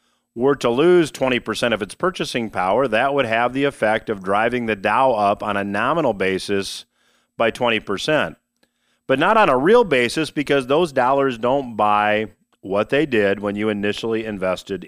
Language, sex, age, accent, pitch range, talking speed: English, male, 40-59, American, 110-150 Hz, 170 wpm